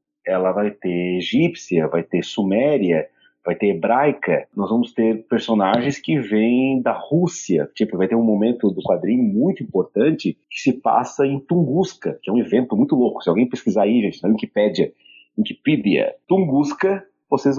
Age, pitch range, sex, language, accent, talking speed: 40-59, 115-185 Hz, male, Portuguese, Brazilian, 165 wpm